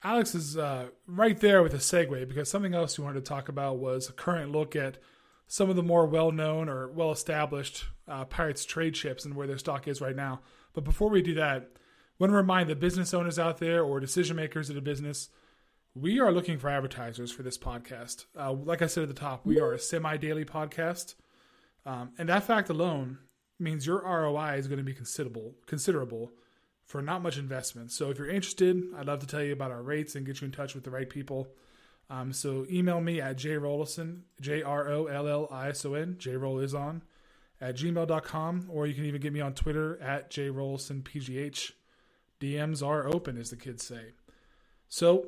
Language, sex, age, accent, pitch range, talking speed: English, male, 30-49, American, 135-165 Hz, 195 wpm